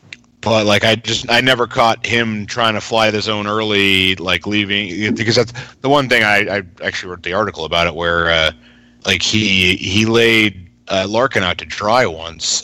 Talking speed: 195 wpm